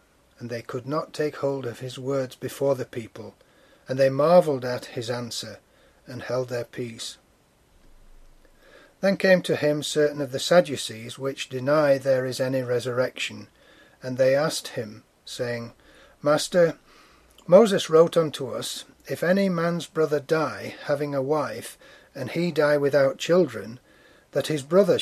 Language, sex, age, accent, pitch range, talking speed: English, male, 40-59, British, 130-170 Hz, 150 wpm